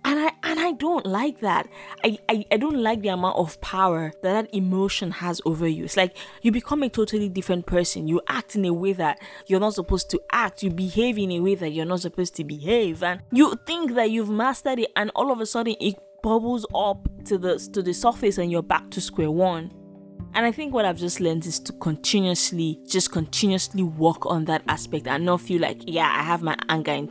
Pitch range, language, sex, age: 160-200 Hz, English, female, 20-39